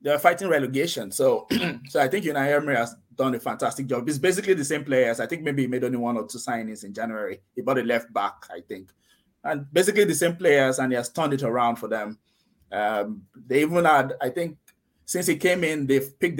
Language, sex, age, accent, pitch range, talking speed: English, male, 20-39, Nigerian, 120-140 Hz, 235 wpm